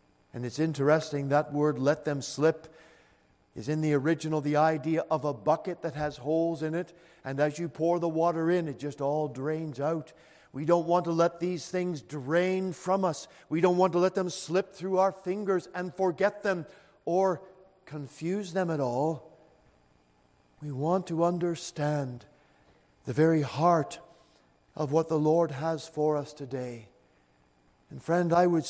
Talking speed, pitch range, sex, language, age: 170 wpm, 150-190 Hz, male, English, 50-69